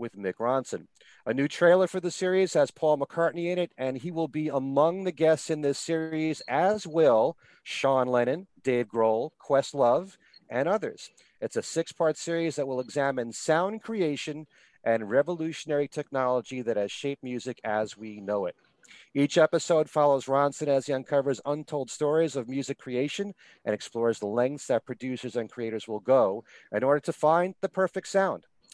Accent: American